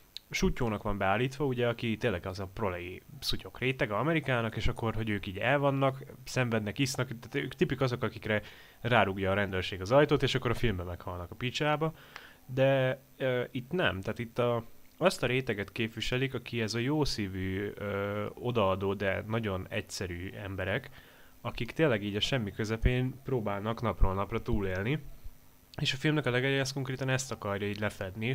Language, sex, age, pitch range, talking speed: Hungarian, male, 10-29, 105-130 Hz, 165 wpm